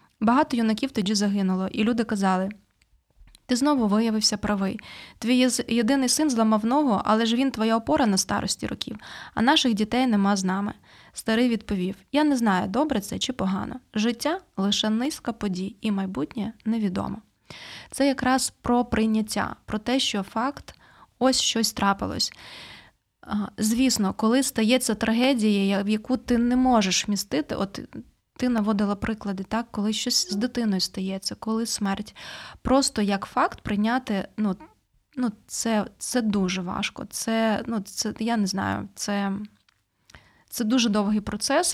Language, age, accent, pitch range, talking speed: Ukrainian, 20-39, native, 200-240 Hz, 145 wpm